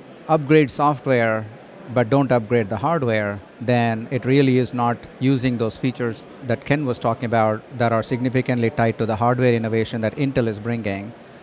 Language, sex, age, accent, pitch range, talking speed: English, male, 50-69, Indian, 115-135 Hz, 170 wpm